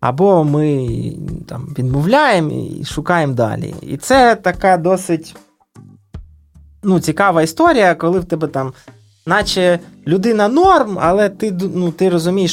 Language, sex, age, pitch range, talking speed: Ukrainian, male, 20-39, 145-185 Hz, 120 wpm